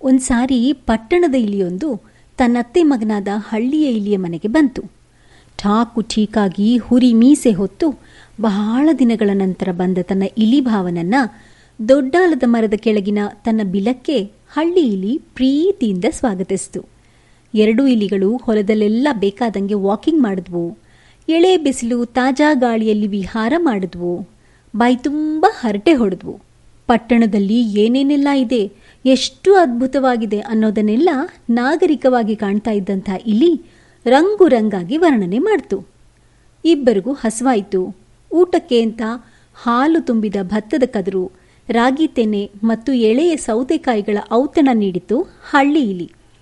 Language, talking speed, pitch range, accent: Kannada, 100 wpm, 210-280 Hz, native